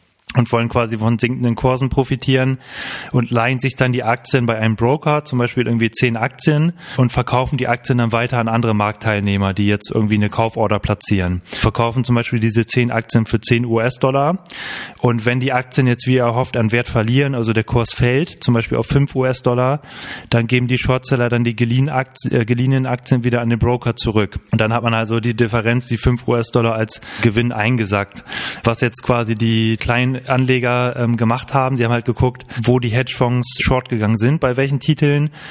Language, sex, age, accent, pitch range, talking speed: German, male, 20-39, German, 115-130 Hz, 190 wpm